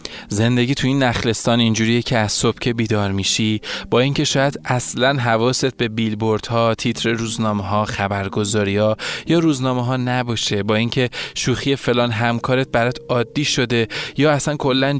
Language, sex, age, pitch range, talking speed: Persian, male, 20-39, 110-135 Hz, 150 wpm